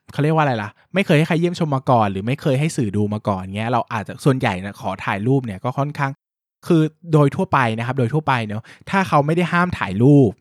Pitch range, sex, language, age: 110-145 Hz, male, Thai, 20-39